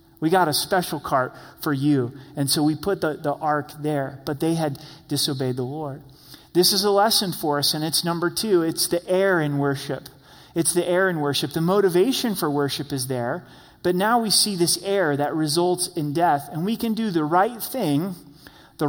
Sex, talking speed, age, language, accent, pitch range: male, 205 wpm, 30-49, English, American, 145-190 Hz